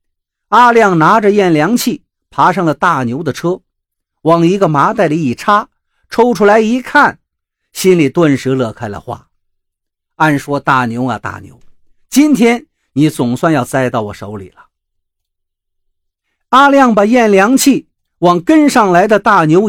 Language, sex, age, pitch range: Chinese, male, 50-69, 120-200 Hz